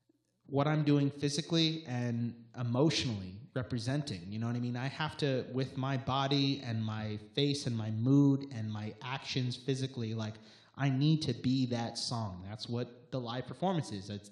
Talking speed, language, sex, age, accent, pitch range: 175 wpm, English, male, 30-49, American, 110-135 Hz